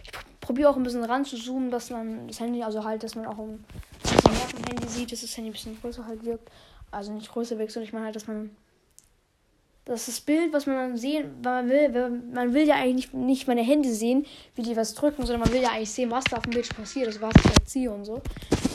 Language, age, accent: German, 10-29, German